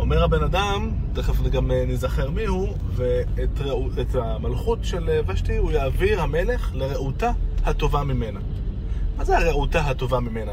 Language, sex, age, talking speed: Hebrew, male, 20-39, 130 wpm